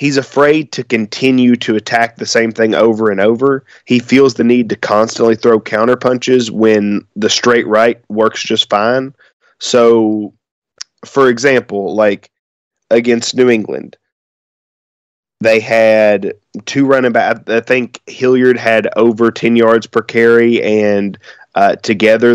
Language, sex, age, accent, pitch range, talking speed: English, male, 20-39, American, 110-125 Hz, 140 wpm